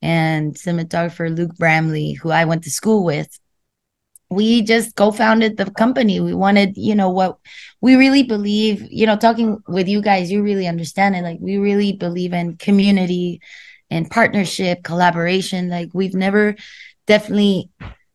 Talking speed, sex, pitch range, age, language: 150 wpm, female, 170-210 Hz, 20-39, English